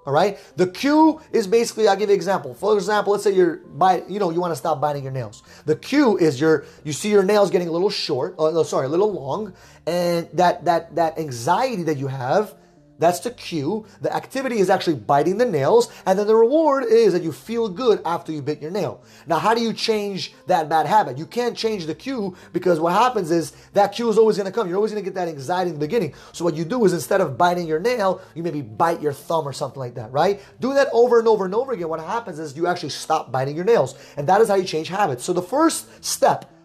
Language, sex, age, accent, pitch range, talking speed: English, male, 30-49, American, 160-225 Hz, 250 wpm